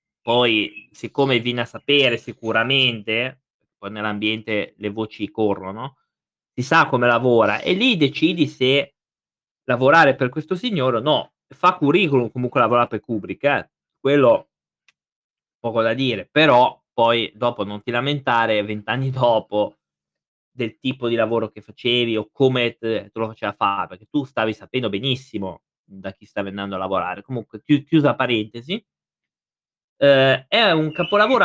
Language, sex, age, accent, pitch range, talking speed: Italian, male, 20-39, native, 115-155 Hz, 145 wpm